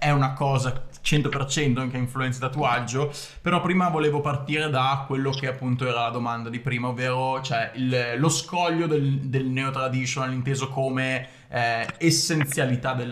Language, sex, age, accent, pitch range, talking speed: Italian, male, 20-39, native, 130-155 Hz, 155 wpm